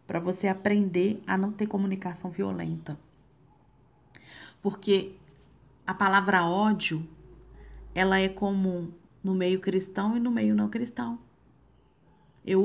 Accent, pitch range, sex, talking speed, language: Brazilian, 160-195 Hz, female, 115 wpm, Portuguese